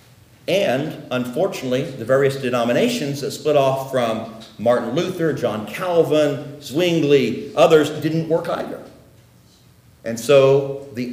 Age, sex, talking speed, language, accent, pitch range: 50-69, male, 115 wpm, English, American, 120-165 Hz